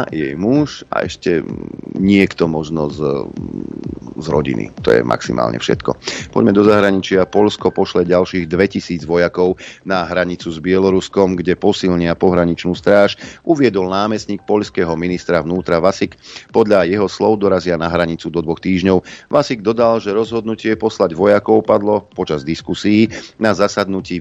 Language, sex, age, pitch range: Slovak, male, 40-59, 90-105 Hz